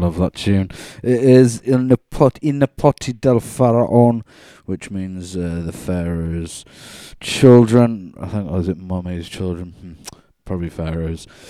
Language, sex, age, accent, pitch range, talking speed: English, male, 20-39, British, 95-120 Hz, 145 wpm